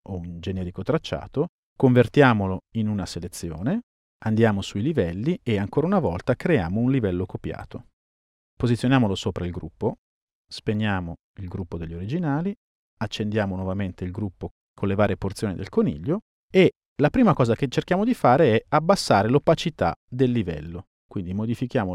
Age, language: 40-59, Italian